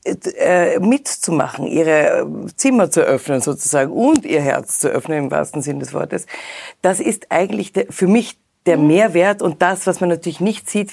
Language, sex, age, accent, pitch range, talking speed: German, female, 50-69, German, 155-185 Hz, 165 wpm